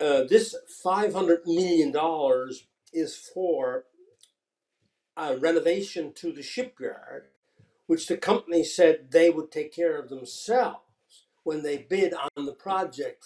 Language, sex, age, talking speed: English, male, 60-79, 120 wpm